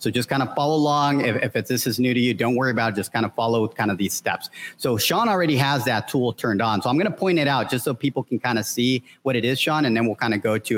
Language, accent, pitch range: English, American, 115-145 Hz